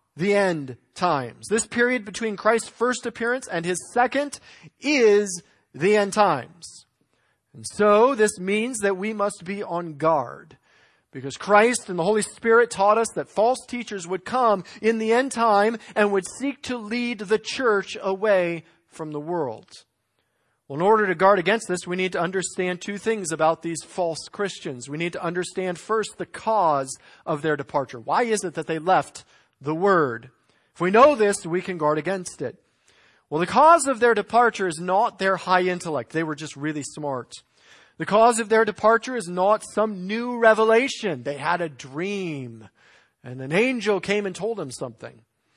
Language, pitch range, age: English, 170-225 Hz, 40-59